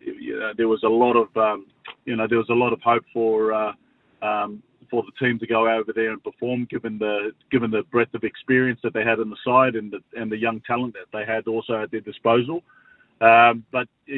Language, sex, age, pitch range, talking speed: English, male, 30-49, 110-125 Hz, 240 wpm